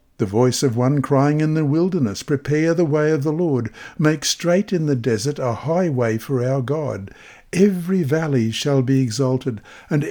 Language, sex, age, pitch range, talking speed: English, male, 60-79, 125-160 Hz, 180 wpm